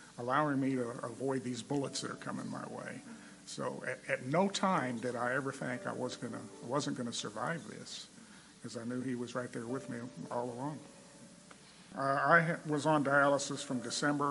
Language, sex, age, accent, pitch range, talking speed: English, male, 50-69, American, 125-145 Hz, 185 wpm